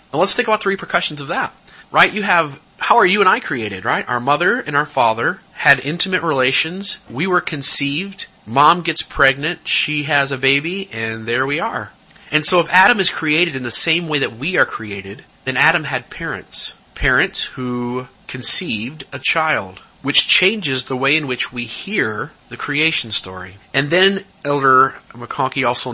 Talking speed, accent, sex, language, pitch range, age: 185 wpm, American, male, English, 120-155 Hz, 30-49